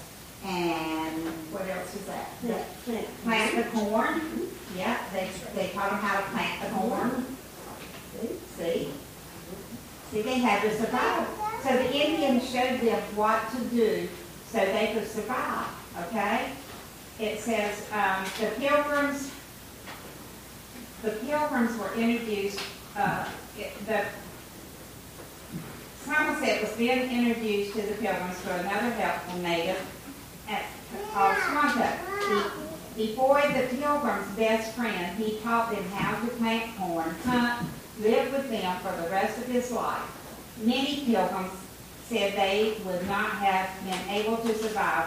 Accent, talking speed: American, 130 wpm